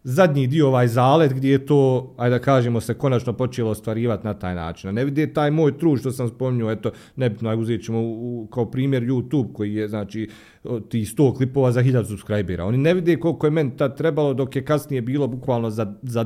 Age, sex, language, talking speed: 40-59, male, Croatian, 220 wpm